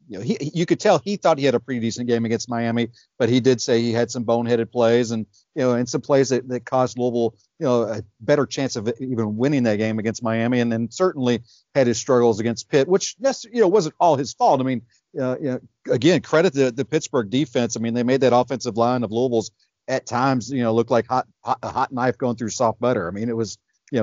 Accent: American